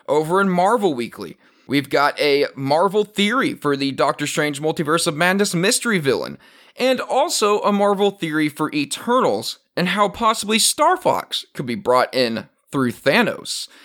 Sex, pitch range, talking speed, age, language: male, 130-200 Hz, 155 wpm, 30-49, English